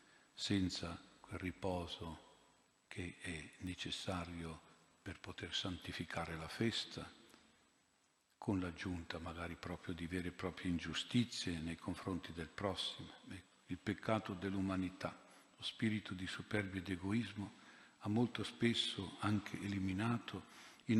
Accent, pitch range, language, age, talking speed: native, 90-110 Hz, Italian, 50-69, 110 wpm